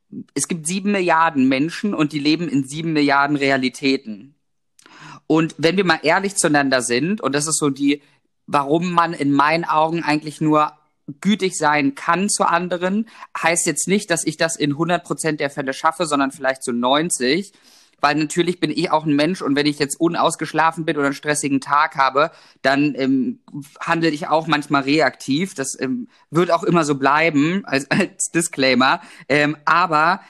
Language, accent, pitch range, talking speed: German, German, 140-170 Hz, 180 wpm